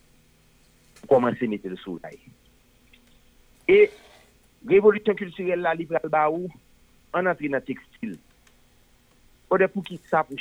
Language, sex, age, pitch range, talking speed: English, male, 50-69, 110-155 Hz, 115 wpm